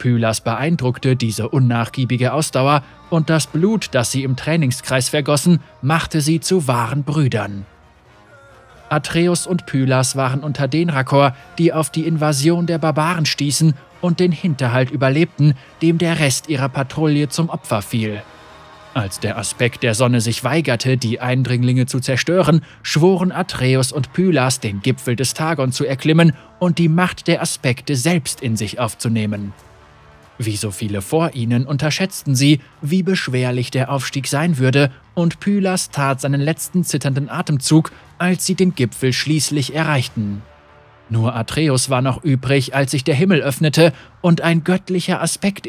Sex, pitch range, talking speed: male, 120-160 Hz, 150 wpm